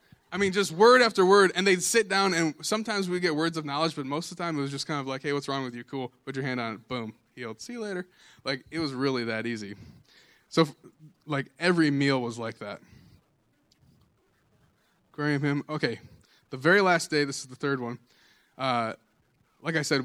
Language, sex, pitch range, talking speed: English, male, 115-165 Hz, 220 wpm